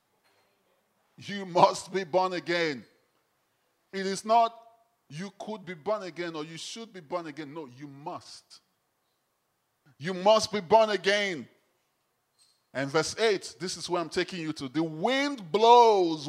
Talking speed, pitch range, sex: 145 wpm, 185-245 Hz, male